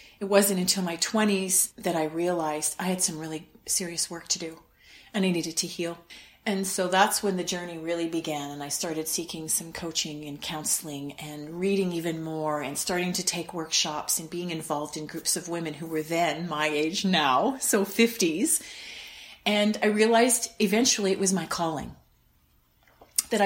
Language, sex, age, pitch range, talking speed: English, female, 40-59, 160-200 Hz, 180 wpm